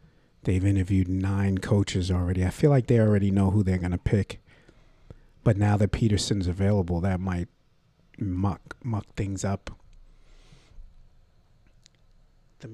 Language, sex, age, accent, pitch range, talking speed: English, male, 50-69, American, 95-120 Hz, 130 wpm